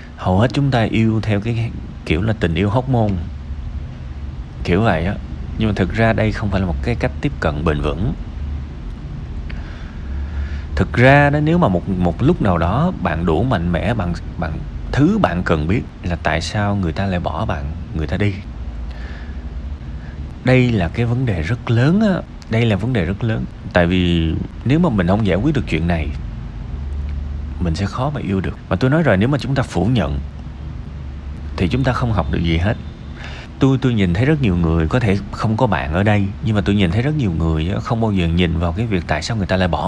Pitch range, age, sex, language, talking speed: 80-130 Hz, 30-49, male, Vietnamese, 220 wpm